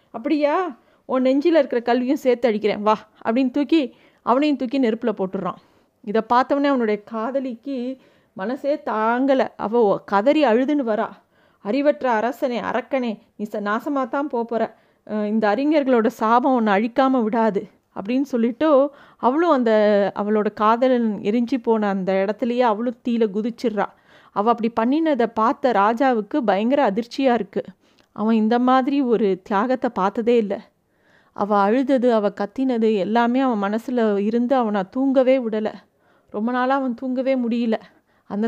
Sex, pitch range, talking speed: female, 220-260 Hz, 130 wpm